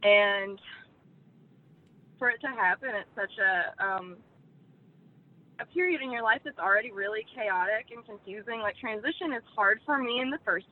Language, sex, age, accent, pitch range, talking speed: English, female, 20-39, American, 185-235 Hz, 160 wpm